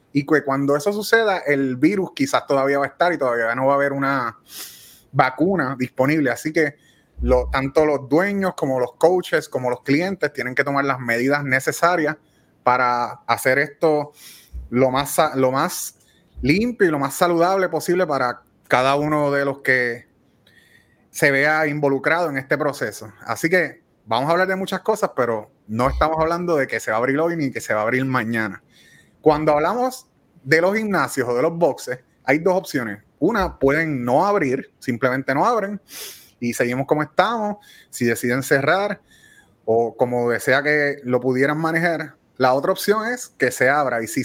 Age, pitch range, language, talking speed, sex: 30-49, 130-170 Hz, Spanish, 175 wpm, male